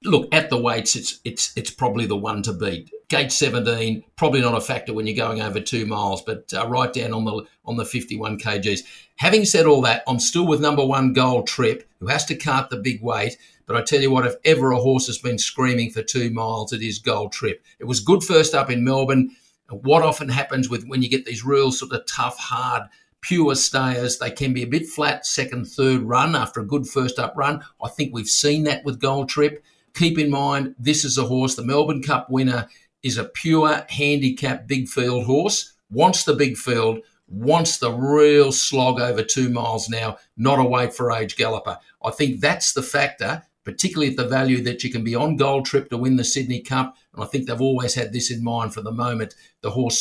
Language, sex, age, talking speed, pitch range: English, male, 50-69, 225 wpm, 120-145 Hz